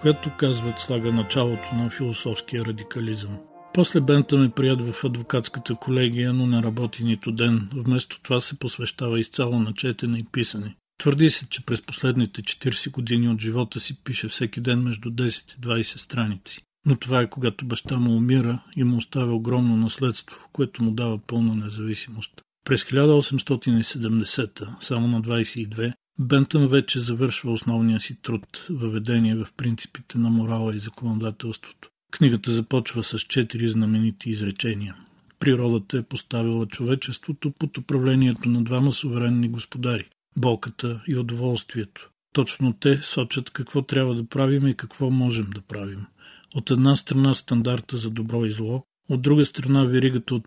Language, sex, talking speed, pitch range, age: Bulgarian, male, 150 wpm, 115-130 Hz, 40-59